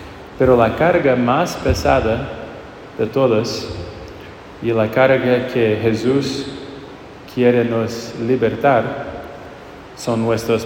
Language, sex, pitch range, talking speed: English, male, 105-125 Hz, 95 wpm